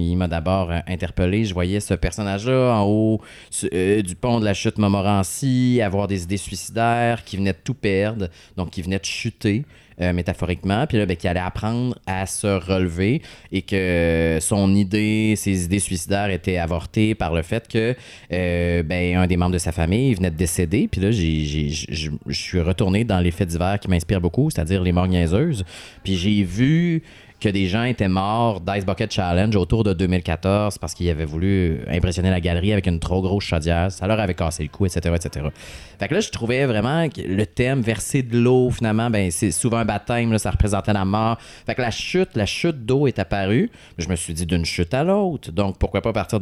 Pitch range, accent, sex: 90-110 Hz, Canadian, male